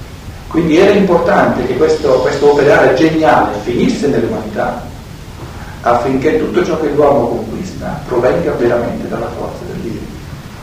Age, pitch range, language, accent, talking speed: 50-69, 125-175 Hz, Italian, native, 125 wpm